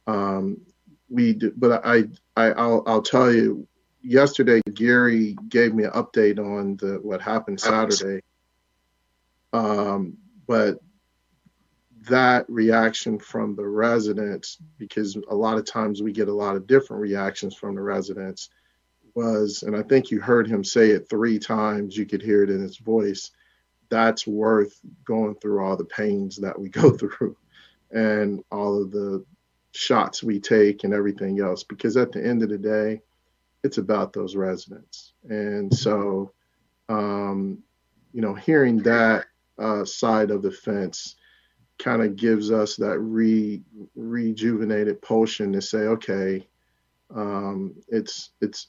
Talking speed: 145 wpm